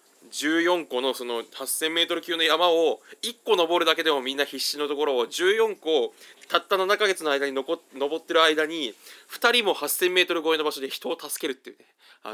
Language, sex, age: Japanese, male, 20-39